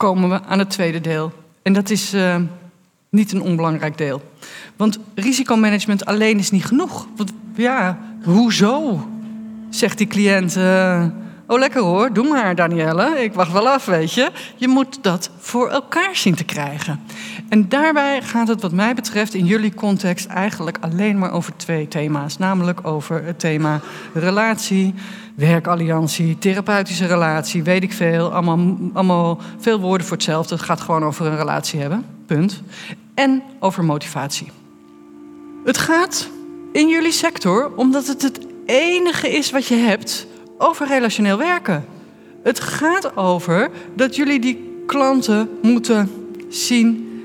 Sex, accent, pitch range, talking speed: female, Dutch, 180-250 Hz, 145 wpm